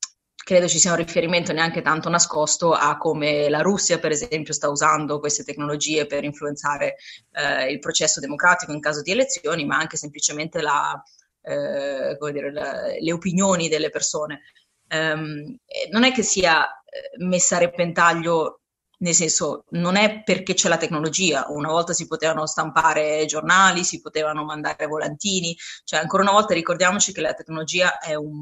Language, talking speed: Italian, 160 wpm